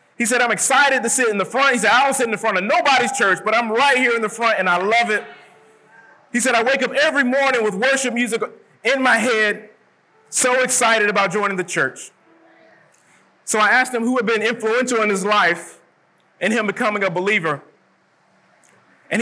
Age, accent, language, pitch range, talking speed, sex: 30-49, American, English, 205-240 Hz, 210 wpm, male